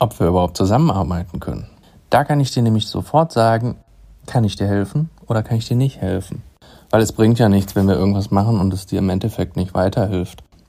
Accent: German